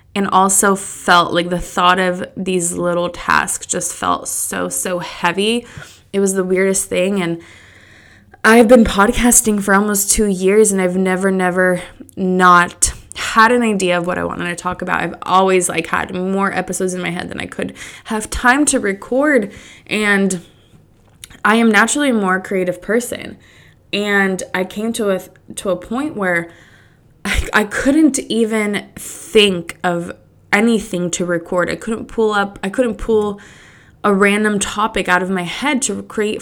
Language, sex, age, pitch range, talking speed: English, female, 20-39, 180-210 Hz, 165 wpm